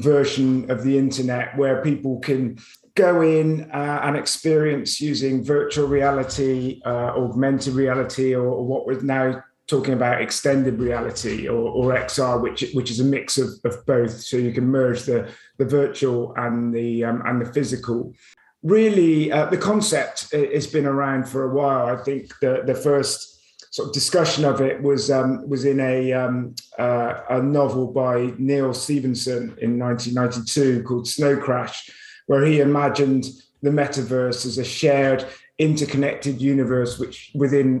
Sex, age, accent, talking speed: male, 30-49, British, 160 wpm